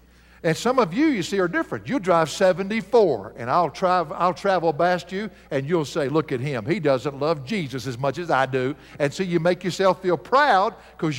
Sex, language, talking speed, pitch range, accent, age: male, English, 220 wpm, 135-185 Hz, American, 60-79